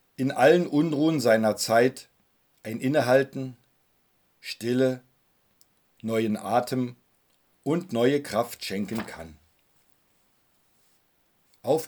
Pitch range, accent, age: 105-140 Hz, German, 50-69